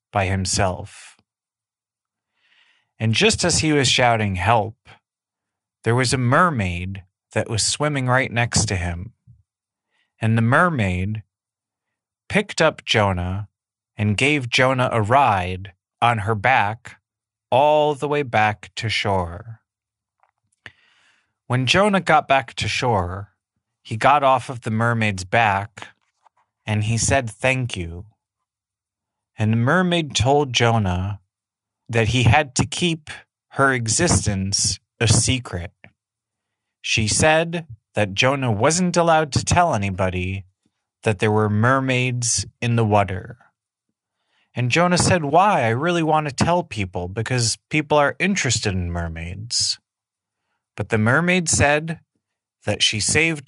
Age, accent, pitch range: 30-49, American, 100-130 Hz